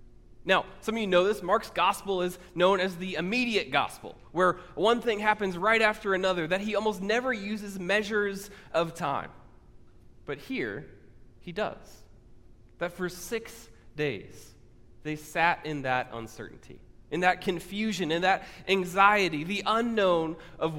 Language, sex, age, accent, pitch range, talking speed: English, male, 20-39, American, 120-190 Hz, 145 wpm